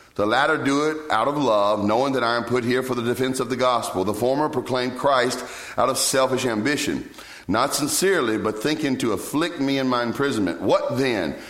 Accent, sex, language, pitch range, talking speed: American, male, English, 105-145 Hz, 205 wpm